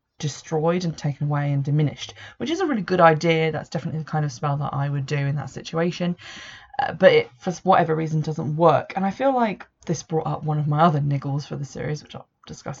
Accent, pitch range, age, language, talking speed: British, 145-165 Hz, 20-39, English, 240 wpm